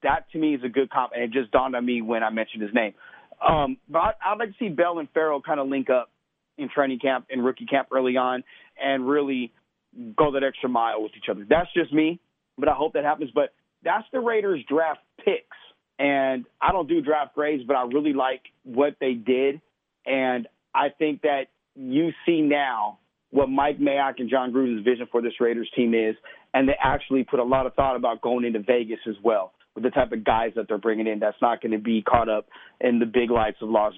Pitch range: 115-140 Hz